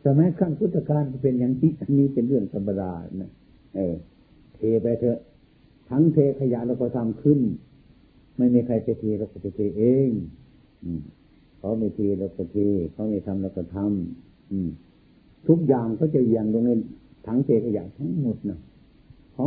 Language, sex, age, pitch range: Thai, male, 60-79, 95-125 Hz